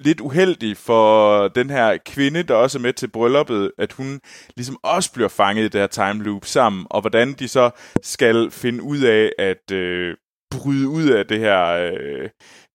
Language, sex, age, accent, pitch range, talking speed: Danish, male, 20-39, native, 105-140 Hz, 190 wpm